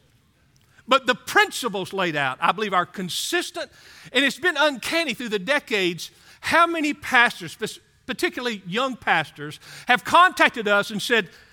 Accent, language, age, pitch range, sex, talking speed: American, English, 50-69, 165-260 Hz, male, 140 wpm